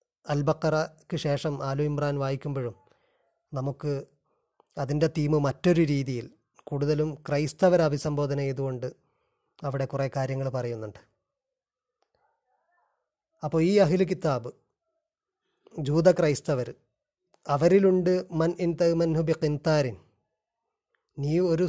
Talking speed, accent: 75 wpm, native